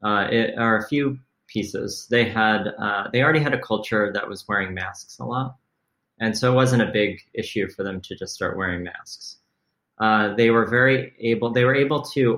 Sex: male